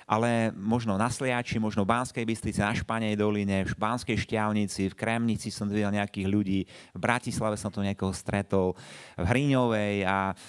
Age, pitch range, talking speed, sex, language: 30-49, 105-140 Hz, 165 wpm, male, Slovak